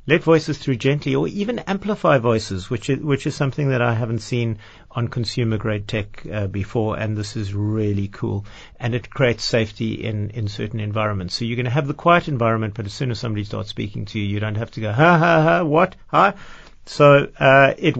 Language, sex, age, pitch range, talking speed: English, male, 50-69, 105-140 Hz, 220 wpm